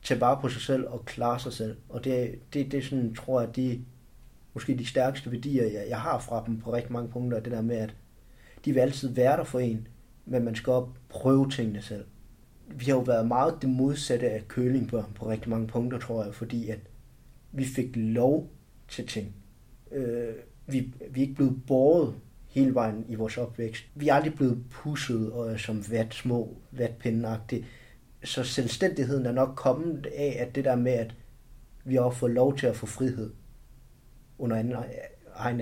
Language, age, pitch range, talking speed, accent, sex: Danish, 30-49, 115-135 Hz, 195 wpm, native, male